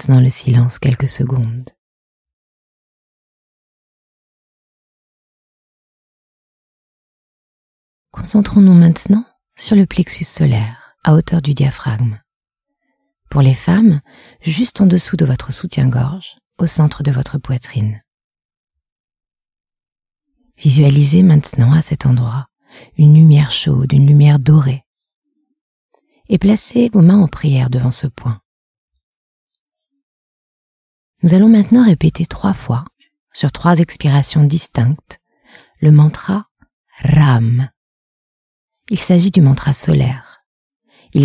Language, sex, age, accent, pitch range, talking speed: French, female, 40-59, French, 130-175 Hz, 100 wpm